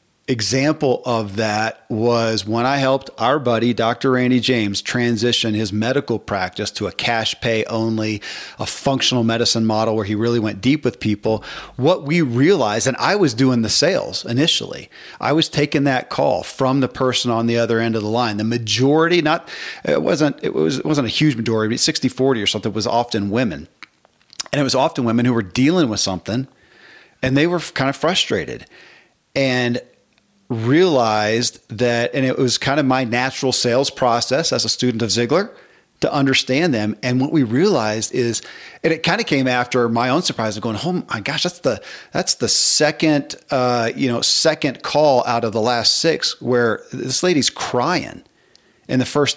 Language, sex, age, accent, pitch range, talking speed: English, male, 40-59, American, 115-135 Hz, 185 wpm